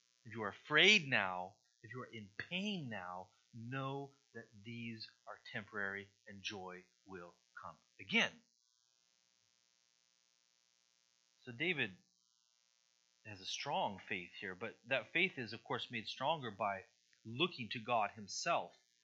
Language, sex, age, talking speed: English, male, 30-49, 130 wpm